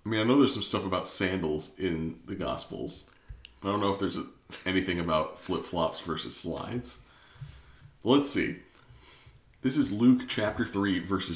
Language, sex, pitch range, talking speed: English, male, 90-120 Hz, 160 wpm